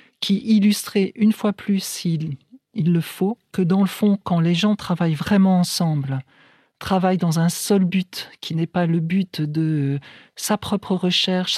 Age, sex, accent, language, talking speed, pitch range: 50-69, male, French, French, 165 wpm, 160-195 Hz